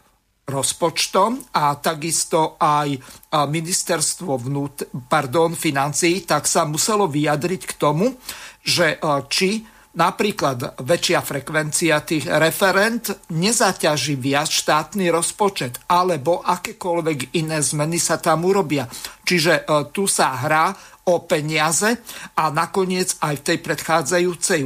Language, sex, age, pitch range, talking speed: Slovak, male, 50-69, 145-175 Hz, 105 wpm